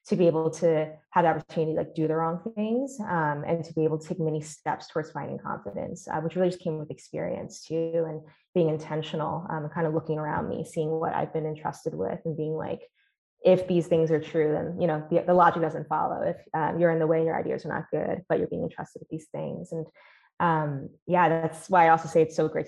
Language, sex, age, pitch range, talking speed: English, female, 20-39, 155-175 Hz, 250 wpm